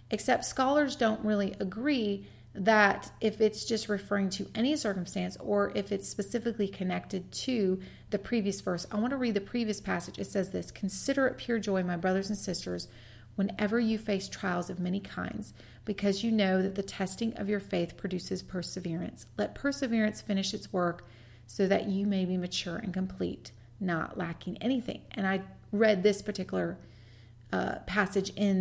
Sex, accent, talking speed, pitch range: female, American, 170 wpm, 175-210 Hz